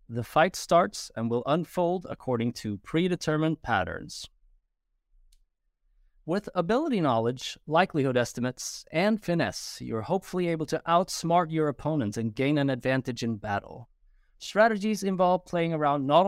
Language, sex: English, male